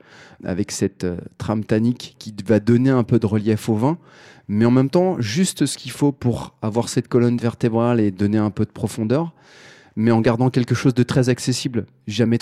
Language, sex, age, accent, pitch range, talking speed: French, male, 30-49, French, 95-125 Hz, 205 wpm